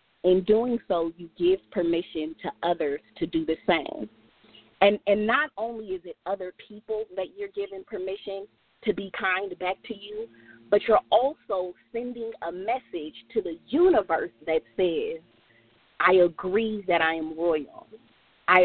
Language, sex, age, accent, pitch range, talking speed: English, female, 30-49, American, 170-225 Hz, 155 wpm